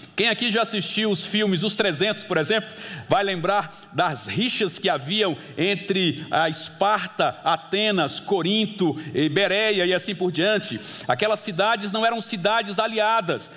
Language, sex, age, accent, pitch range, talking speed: Portuguese, male, 60-79, Brazilian, 195-235 Hz, 140 wpm